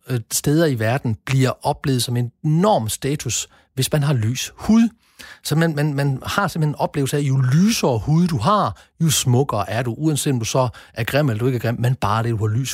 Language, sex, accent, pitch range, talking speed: Danish, male, native, 120-175 Hz, 230 wpm